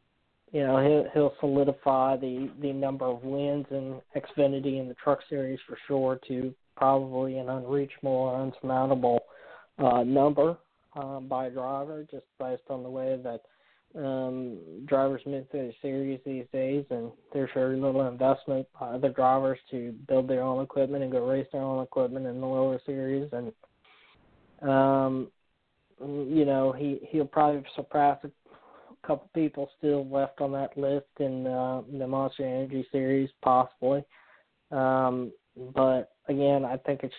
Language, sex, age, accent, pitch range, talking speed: English, male, 20-39, American, 130-140 Hz, 155 wpm